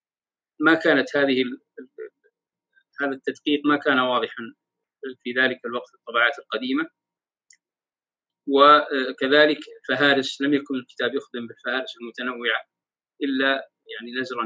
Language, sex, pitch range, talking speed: Arabic, male, 135-190 Hz, 105 wpm